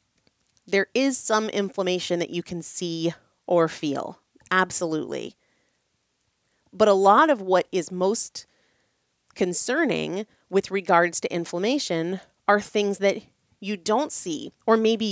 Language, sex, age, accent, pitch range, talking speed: English, female, 30-49, American, 165-225 Hz, 125 wpm